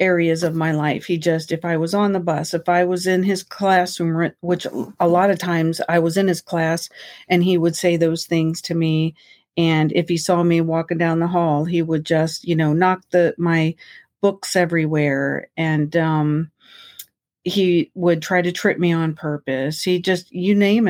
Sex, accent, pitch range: female, American, 160-180 Hz